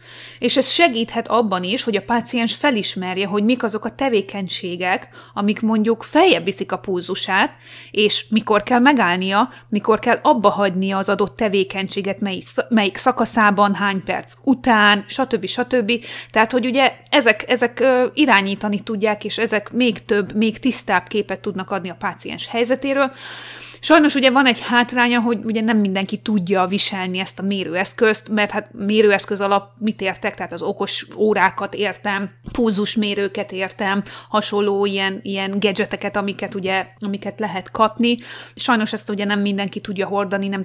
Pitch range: 195-230 Hz